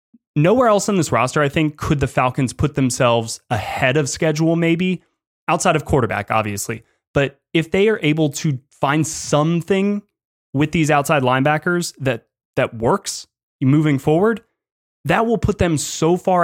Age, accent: 20-39, American